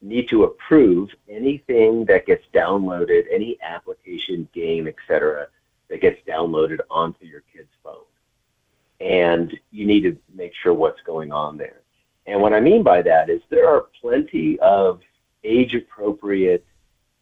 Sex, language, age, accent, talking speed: male, English, 50-69, American, 140 wpm